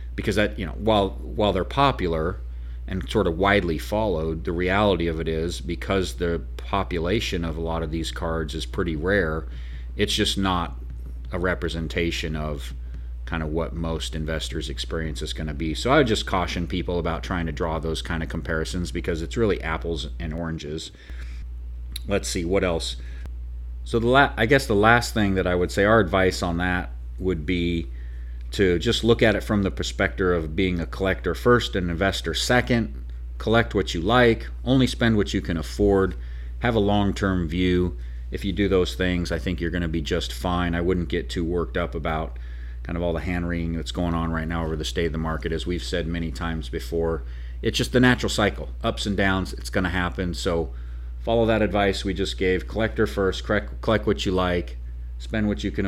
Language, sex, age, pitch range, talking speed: English, male, 40-59, 70-95 Hz, 205 wpm